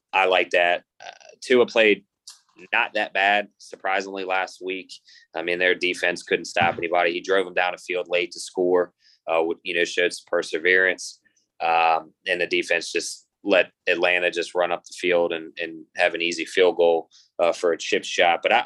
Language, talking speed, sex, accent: English, 195 wpm, male, American